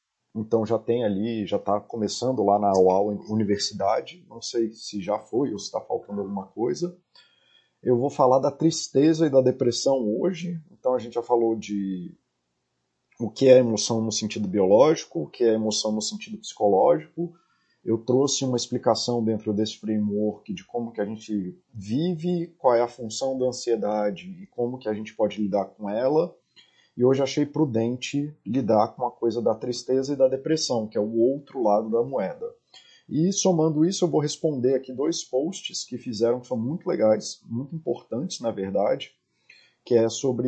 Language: Portuguese